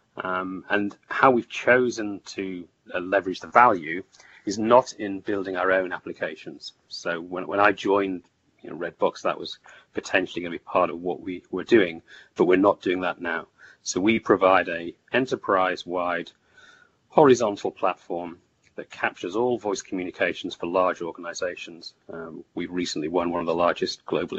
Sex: male